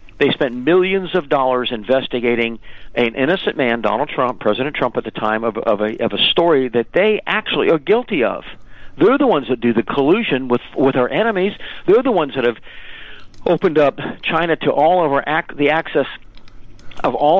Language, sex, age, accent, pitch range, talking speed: English, male, 50-69, American, 120-150 Hz, 195 wpm